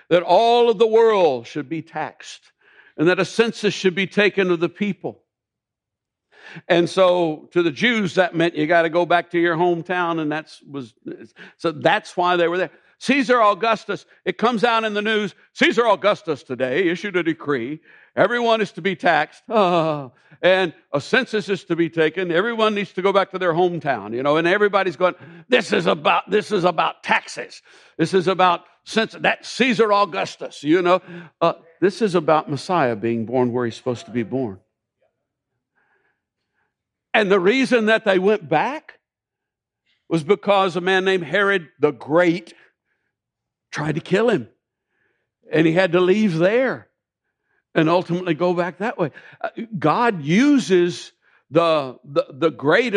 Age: 60-79